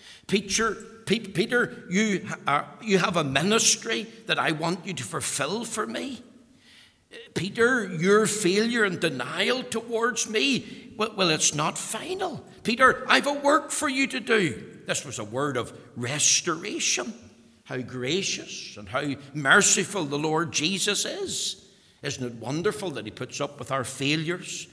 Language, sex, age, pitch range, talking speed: English, male, 60-79, 145-215 Hz, 150 wpm